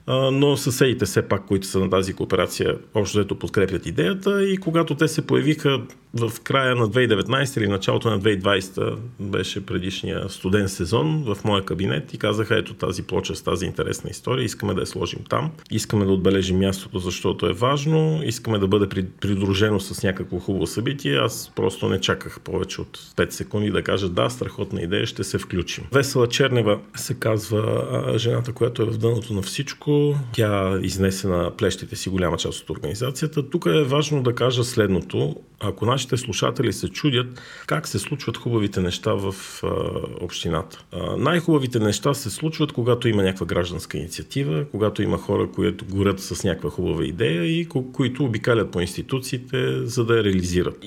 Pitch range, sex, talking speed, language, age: 100-135 Hz, male, 170 wpm, Bulgarian, 40-59